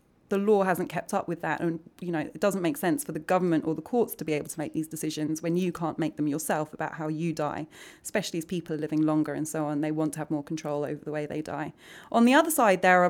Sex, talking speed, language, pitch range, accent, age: female, 290 wpm, English, 155-185 Hz, British, 30-49